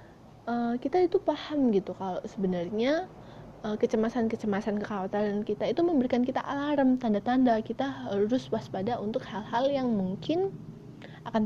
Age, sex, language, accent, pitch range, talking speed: 20-39, female, Indonesian, native, 205-285 Hz, 125 wpm